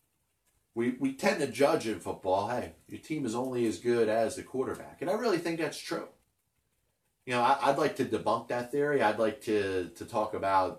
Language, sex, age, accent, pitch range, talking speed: English, male, 30-49, American, 105-135 Hz, 210 wpm